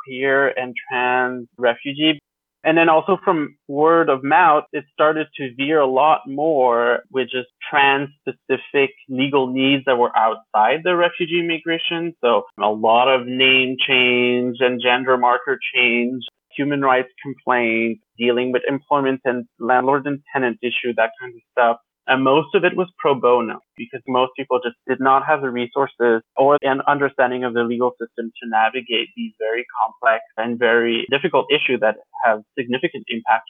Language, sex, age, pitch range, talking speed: English, male, 30-49, 120-140 Hz, 165 wpm